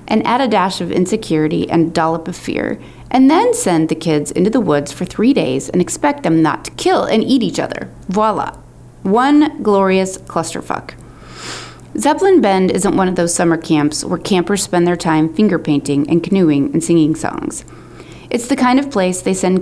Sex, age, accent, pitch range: female, 30-49, American, 160-220 Hz